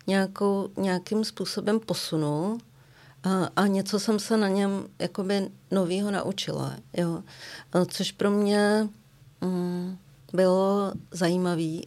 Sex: female